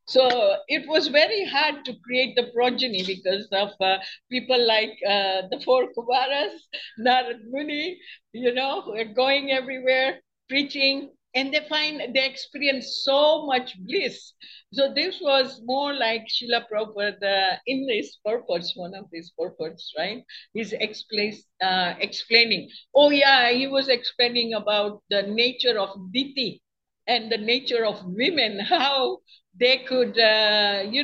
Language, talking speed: English, 145 wpm